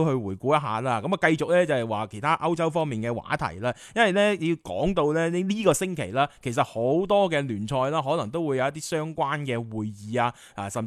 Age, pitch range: 20-39, 120-170 Hz